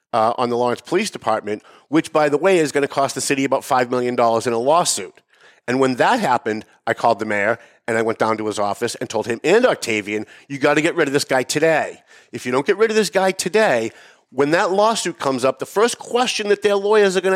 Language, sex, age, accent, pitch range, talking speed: English, male, 50-69, American, 115-180 Hz, 250 wpm